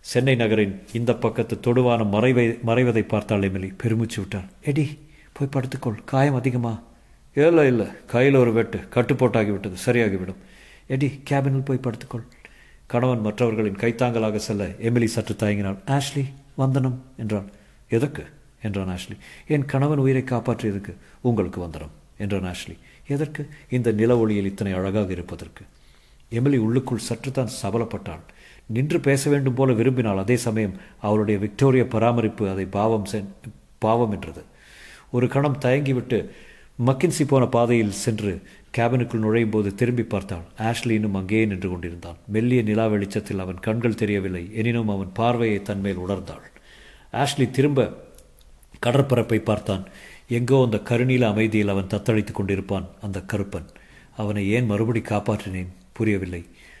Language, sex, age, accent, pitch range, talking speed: Tamil, male, 50-69, native, 100-125 Hz, 125 wpm